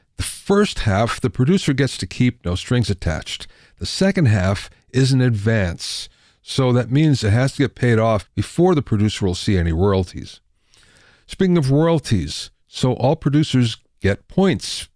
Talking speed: 165 wpm